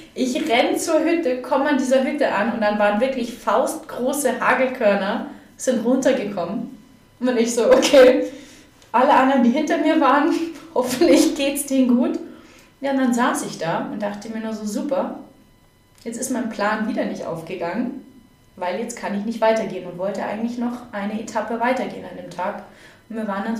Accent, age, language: German, 20-39, German